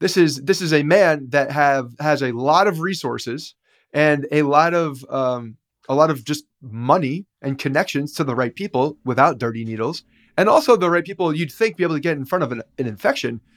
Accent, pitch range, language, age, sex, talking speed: American, 135-170 Hz, English, 30-49, male, 215 wpm